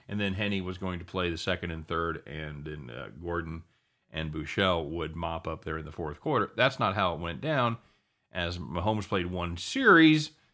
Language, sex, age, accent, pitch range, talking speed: English, male, 40-59, American, 85-100 Hz, 205 wpm